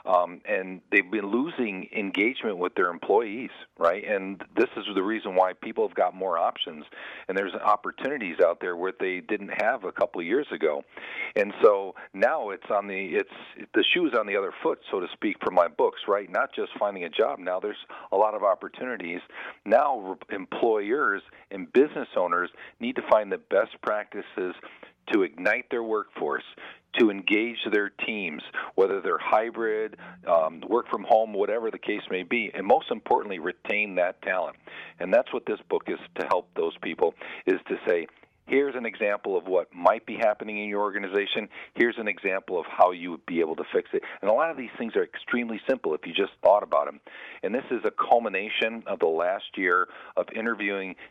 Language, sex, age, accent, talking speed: English, male, 50-69, American, 195 wpm